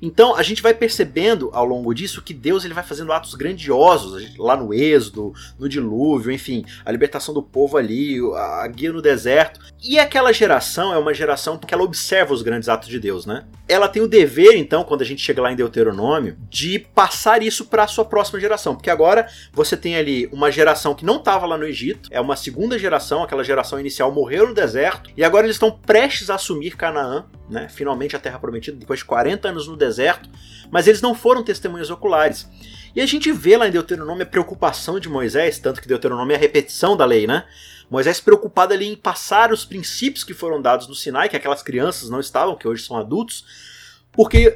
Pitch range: 145-245 Hz